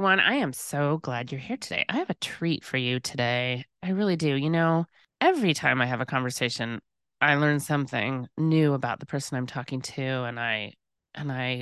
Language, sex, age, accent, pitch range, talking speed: English, female, 30-49, American, 130-165 Hz, 195 wpm